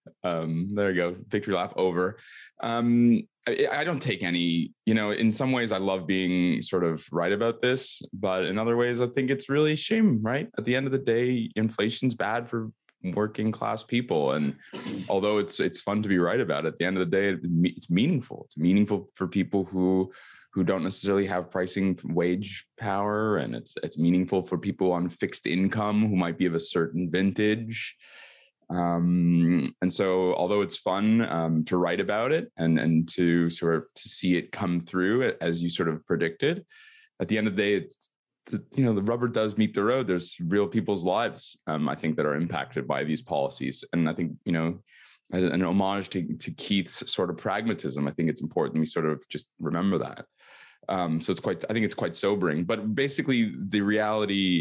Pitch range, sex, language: 85-110 Hz, male, English